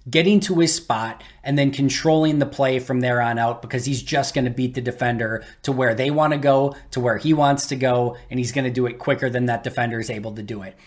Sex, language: male, English